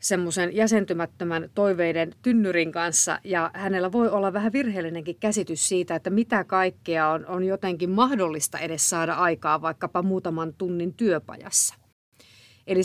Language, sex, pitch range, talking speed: Finnish, female, 165-195 Hz, 130 wpm